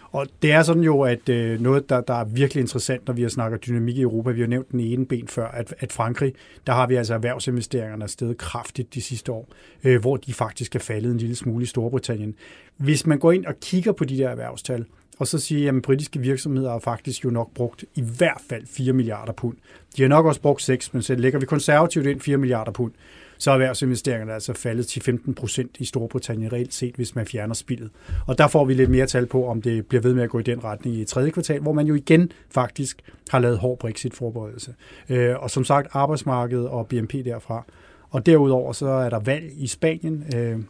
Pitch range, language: 120-140 Hz, Danish